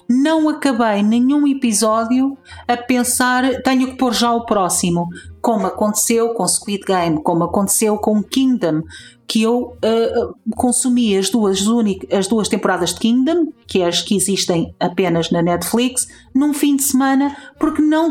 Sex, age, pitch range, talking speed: female, 40-59, 205-255 Hz, 155 wpm